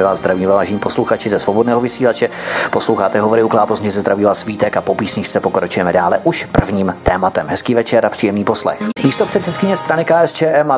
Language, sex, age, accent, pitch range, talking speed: Czech, male, 30-49, native, 110-135 Hz, 165 wpm